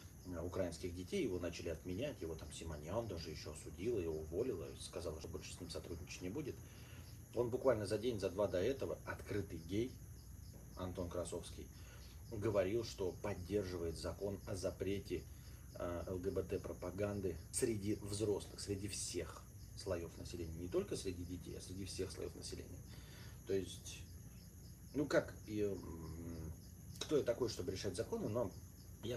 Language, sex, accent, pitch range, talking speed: Russian, male, native, 90-105 Hz, 145 wpm